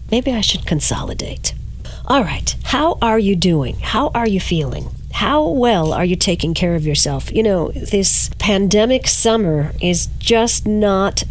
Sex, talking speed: female, 160 wpm